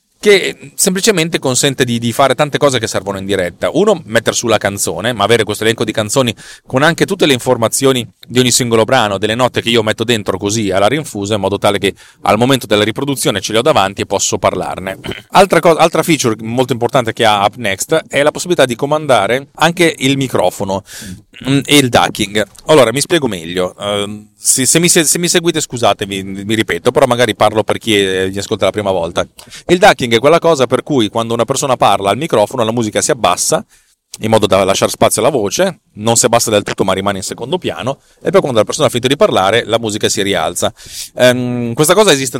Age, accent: 30-49, native